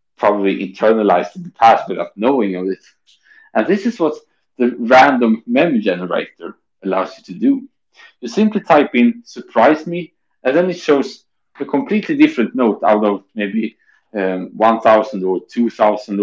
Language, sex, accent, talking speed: English, male, Norwegian, 150 wpm